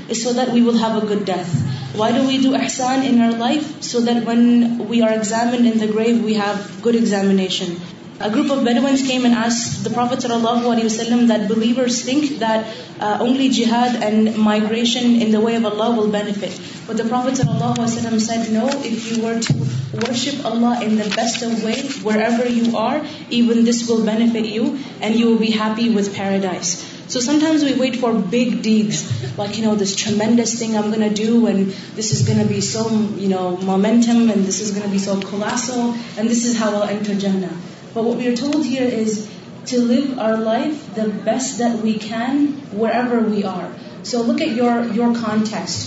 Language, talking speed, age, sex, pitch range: Urdu, 210 wpm, 20-39, female, 215-235 Hz